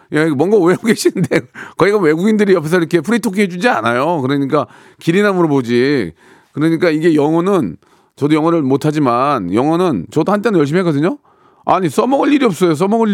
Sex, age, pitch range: male, 40-59, 130-190 Hz